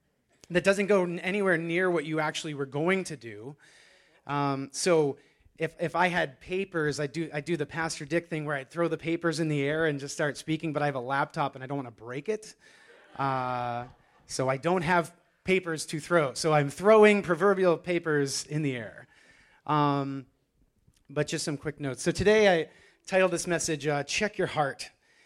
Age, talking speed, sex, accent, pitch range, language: 30-49, 195 wpm, male, American, 130-165 Hz, English